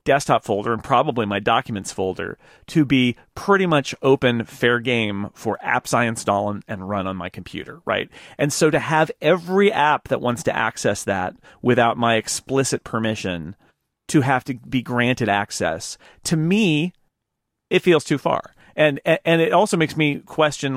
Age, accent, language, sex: 40-59, American, English, male